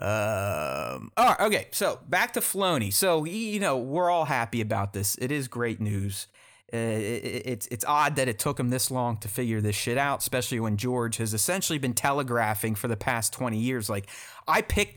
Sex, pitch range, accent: male, 115-150 Hz, American